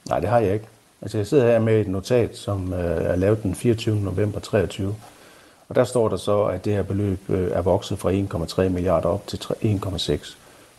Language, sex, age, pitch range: Danish, male, 60-79, 95-115 Hz